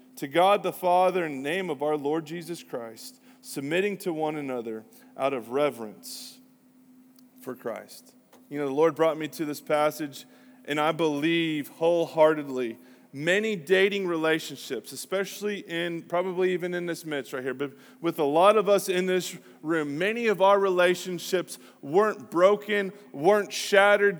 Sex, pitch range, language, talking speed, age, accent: male, 150-200 Hz, English, 155 wpm, 30-49, American